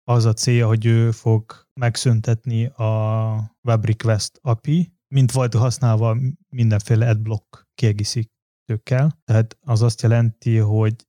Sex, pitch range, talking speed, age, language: male, 110-125 Hz, 115 wpm, 20-39, Hungarian